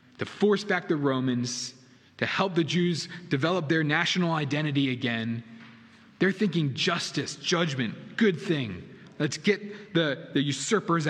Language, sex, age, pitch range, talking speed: English, male, 20-39, 115-160 Hz, 135 wpm